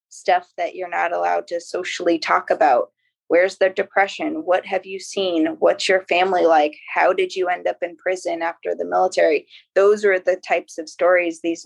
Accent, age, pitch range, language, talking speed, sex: American, 20-39, 170-195 Hz, English, 190 wpm, female